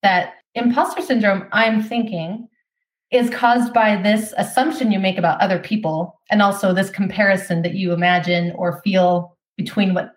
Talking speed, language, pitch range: 155 wpm, English, 190-245 Hz